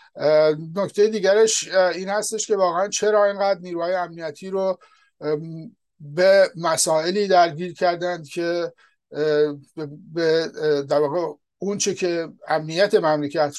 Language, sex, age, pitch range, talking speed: English, male, 60-79, 150-180 Hz, 100 wpm